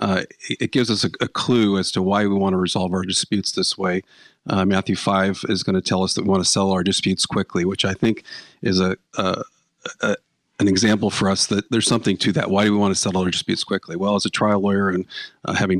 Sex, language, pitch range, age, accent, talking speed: male, English, 95-105 Hz, 40-59, American, 255 wpm